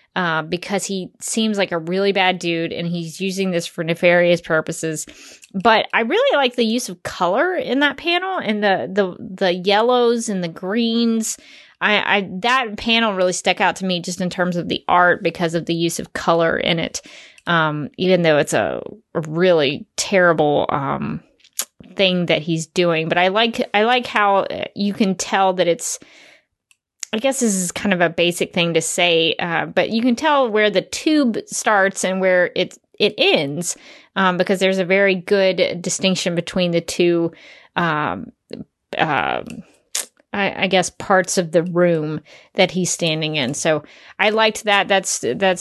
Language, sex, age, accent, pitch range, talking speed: English, female, 20-39, American, 170-210 Hz, 180 wpm